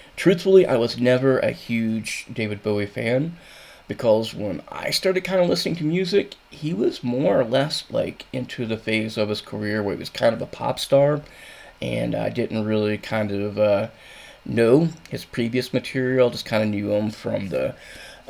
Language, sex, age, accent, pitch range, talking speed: English, male, 20-39, American, 105-130 Hz, 185 wpm